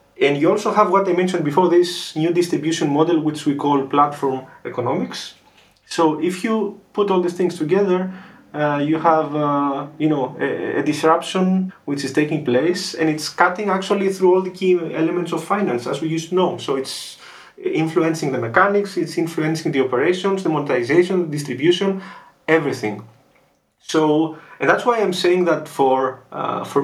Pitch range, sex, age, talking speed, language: 140-180 Hz, male, 30-49, 175 wpm, English